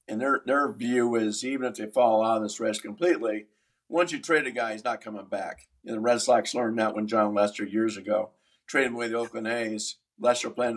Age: 50-69